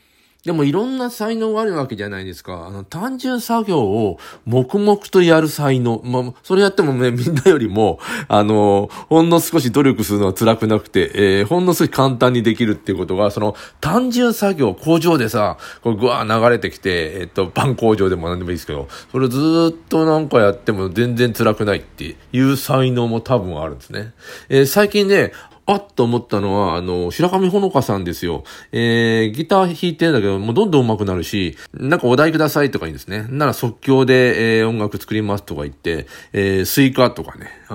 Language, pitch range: Japanese, 95-145 Hz